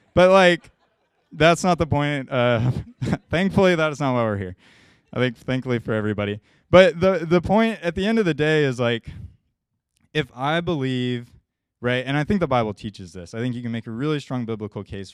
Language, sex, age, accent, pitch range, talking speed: English, male, 20-39, American, 105-135 Hz, 205 wpm